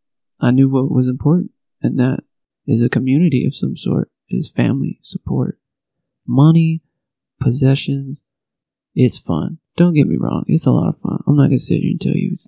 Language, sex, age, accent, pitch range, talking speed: English, male, 20-39, American, 125-155 Hz, 190 wpm